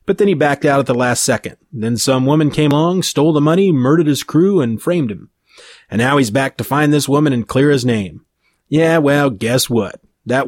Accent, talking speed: American, 230 wpm